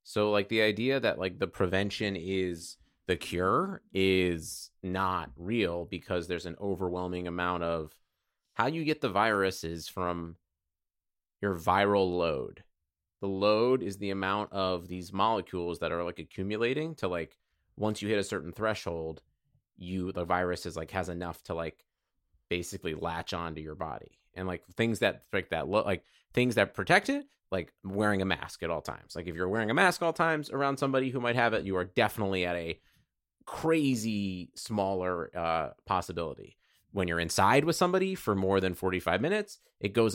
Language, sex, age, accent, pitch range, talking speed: English, male, 30-49, American, 90-120 Hz, 175 wpm